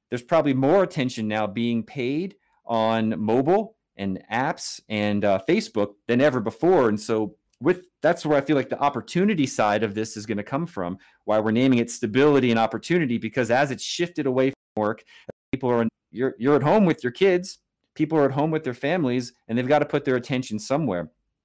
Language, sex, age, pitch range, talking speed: English, male, 30-49, 115-150 Hz, 205 wpm